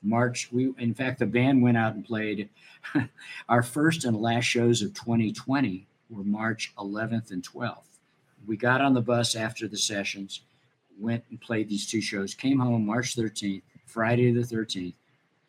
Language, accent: English, American